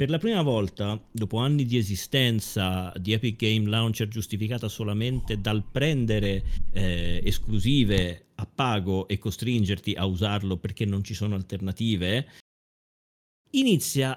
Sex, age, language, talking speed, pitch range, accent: male, 40-59, Italian, 125 wpm, 100-130 Hz, native